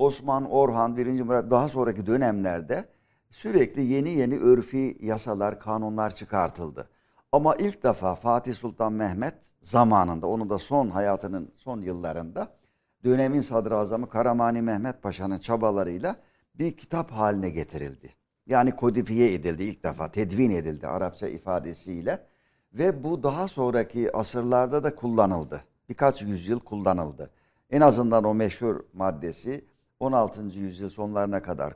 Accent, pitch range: native, 95-130 Hz